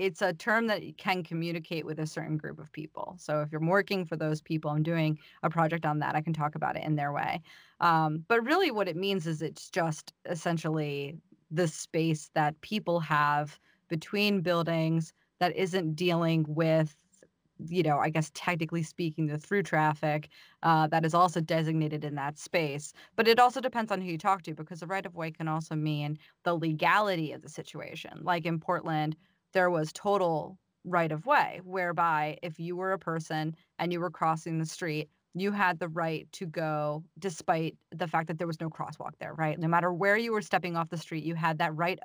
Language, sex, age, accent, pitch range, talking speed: English, female, 30-49, American, 160-185 Hz, 205 wpm